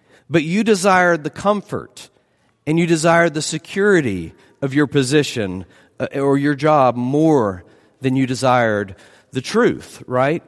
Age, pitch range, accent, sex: 40-59, 125-185 Hz, American, male